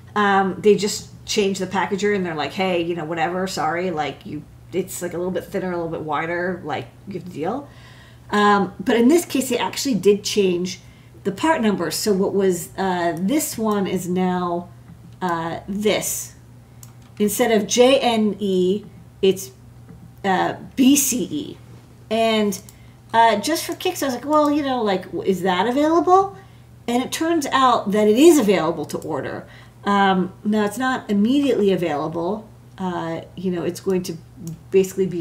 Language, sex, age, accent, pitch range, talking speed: English, female, 40-59, American, 175-235 Hz, 165 wpm